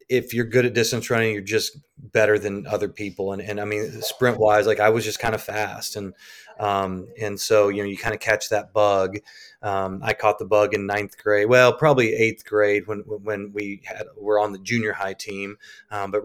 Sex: male